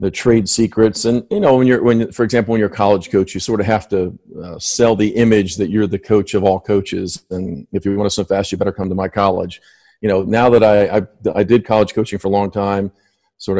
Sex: male